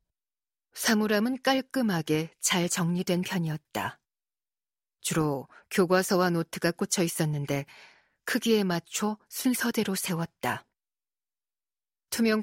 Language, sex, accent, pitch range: Korean, female, native, 165-205 Hz